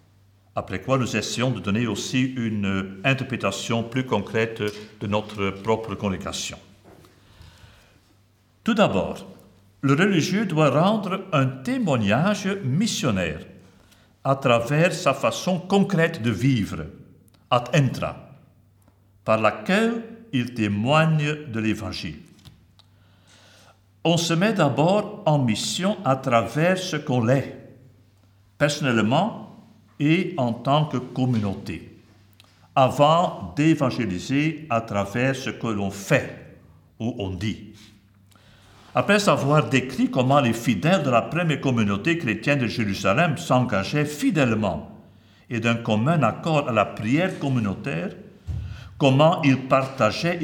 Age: 60-79